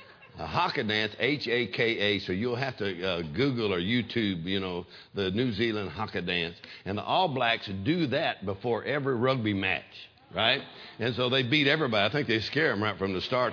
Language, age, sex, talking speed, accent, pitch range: English, 60-79, male, 190 wpm, American, 105-130 Hz